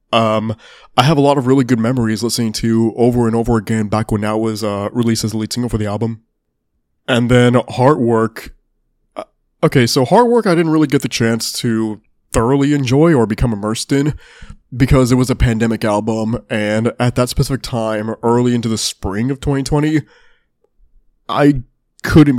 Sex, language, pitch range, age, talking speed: male, English, 110-135 Hz, 20-39, 180 wpm